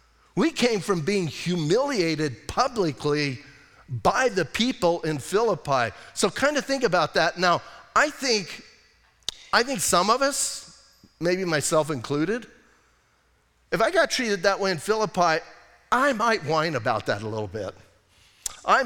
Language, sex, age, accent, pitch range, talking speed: English, male, 50-69, American, 155-210 Hz, 145 wpm